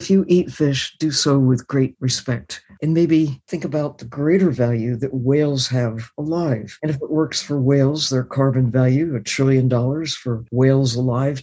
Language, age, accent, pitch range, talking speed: English, 60-79, American, 125-165 Hz, 185 wpm